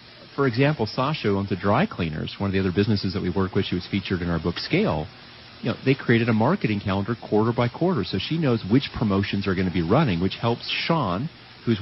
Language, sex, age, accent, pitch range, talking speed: English, male, 40-59, American, 90-115 Hz, 240 wpm